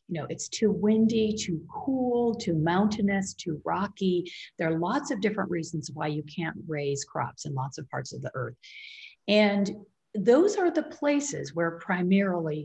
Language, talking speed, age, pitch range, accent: English, 170 wpm, 50-69, 155-215 Hz, American